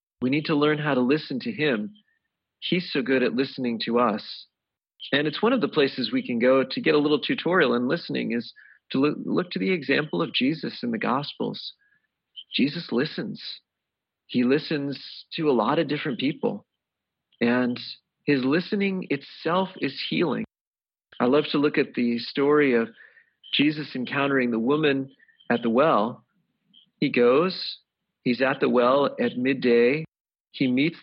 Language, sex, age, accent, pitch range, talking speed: English, male, 40-59, American, 130-180 Hz, 160 wpm